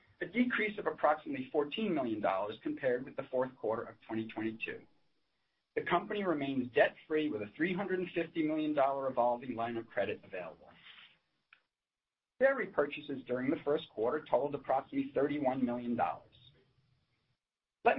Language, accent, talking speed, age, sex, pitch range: English, American, 125 wpm, 40-59, male, 130-180 Hz